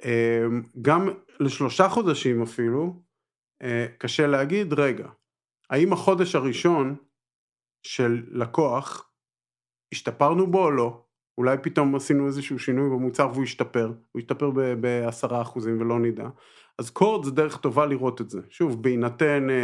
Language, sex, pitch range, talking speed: Hebrew, male, 120-165 Hz, 120 wpm